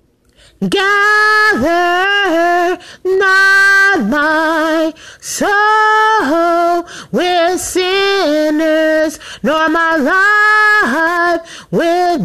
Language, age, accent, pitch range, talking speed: English, 30-49, American, 325-400 Hz, 50 wpm